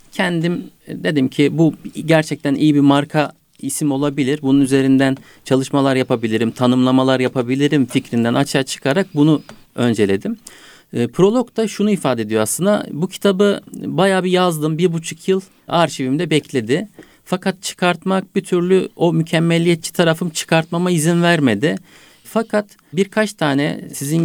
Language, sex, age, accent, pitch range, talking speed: Turkish, male, 50-69, native, 135-180 Hz, 125 wpm